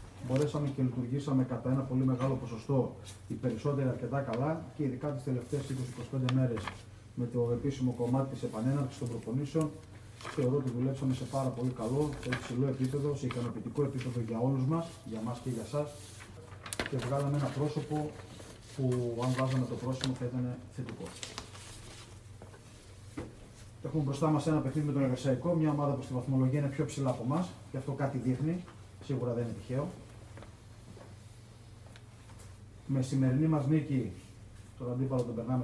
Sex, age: male, 30-49